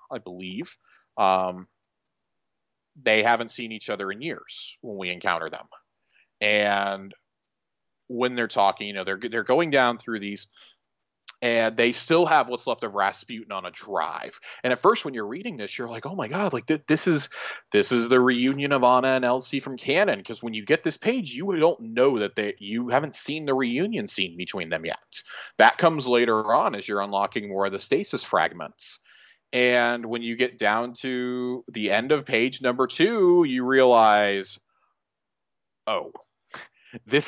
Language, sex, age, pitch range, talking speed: English, male, 30-49, 105-130 Hz, 180 wpm